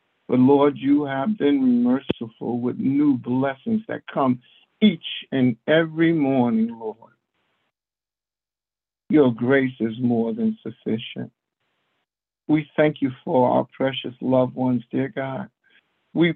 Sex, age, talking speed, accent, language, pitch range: male, 60-79, 120 wpm, American, English, 130-185 Hz